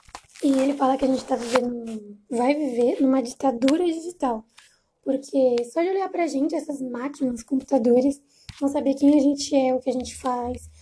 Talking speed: 185 wpm